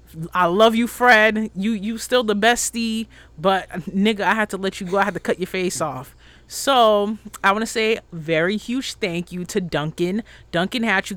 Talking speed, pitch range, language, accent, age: 200 wpm, 160-220 Hz, English, American, 30-49